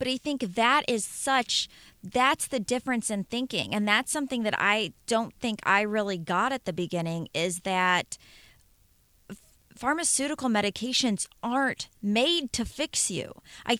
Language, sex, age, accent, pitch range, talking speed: English, female, 30-49, American, 195-260 Hz, 150 wpm